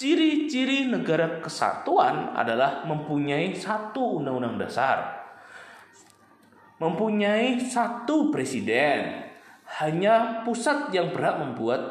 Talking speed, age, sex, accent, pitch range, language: 80 wpm, 20-39, male, native, 150-245 Hz, Indonesian